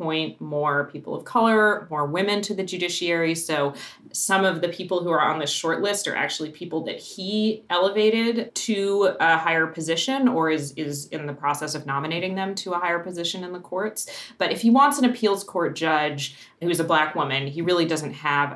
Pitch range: 145-195 Hz